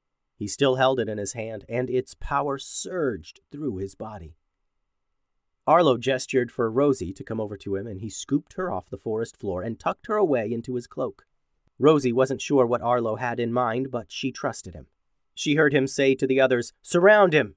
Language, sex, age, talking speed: English, male, 30-49, 200 wpm